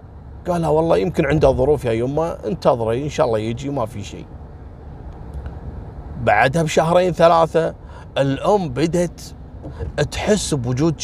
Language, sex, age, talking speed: Arabic, male, 30-49, 120 wpm